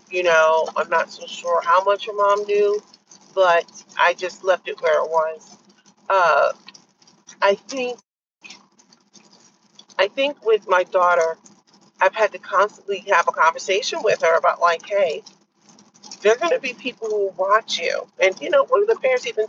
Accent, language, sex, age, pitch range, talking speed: American, English, female, 40-59, 180-220 Hz, 175 wpm